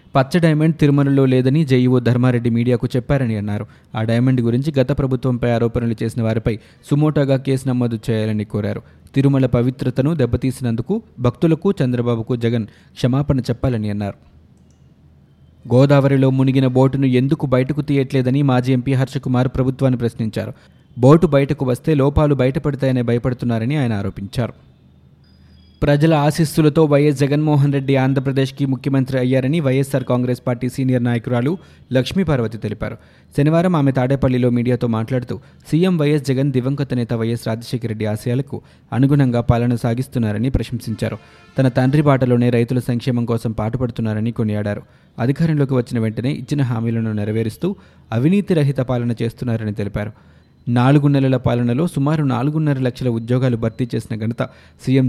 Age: 20-39